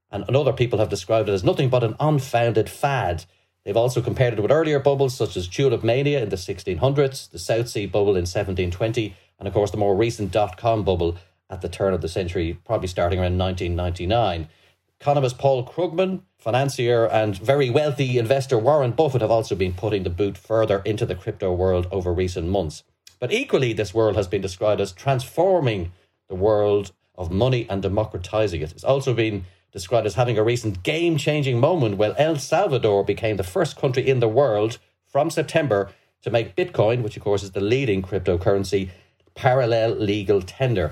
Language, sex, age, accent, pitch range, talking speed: English, male, 30-49, Irish, 100-135 Hz, 185 wpm